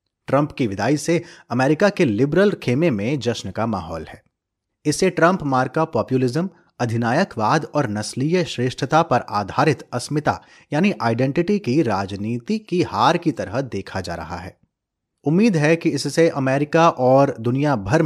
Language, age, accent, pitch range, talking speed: Hindi, 30-49, native, 115-160 Hz, 150 wpm